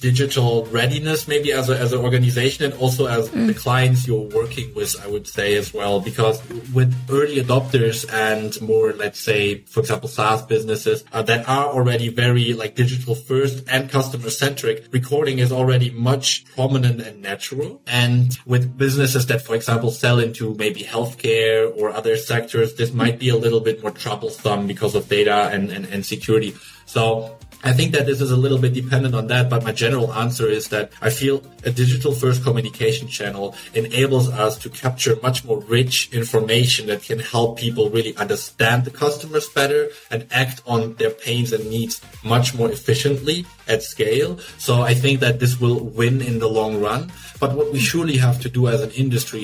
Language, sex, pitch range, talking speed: English, male, 115-135 Hz, 185 wpm